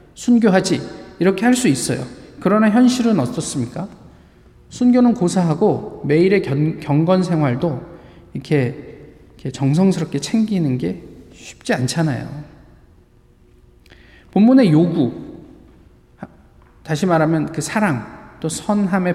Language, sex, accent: Korean, male, native